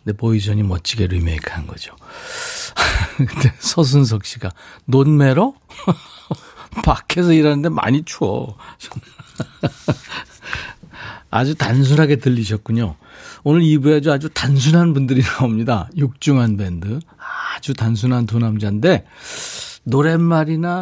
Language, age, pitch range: Korean, 40-59, 110-150 Hz